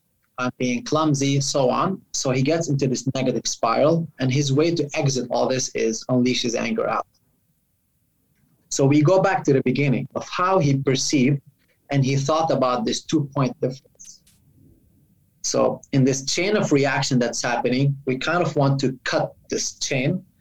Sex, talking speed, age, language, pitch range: male, 170 wpm, 30-49, English, 125-150 Hz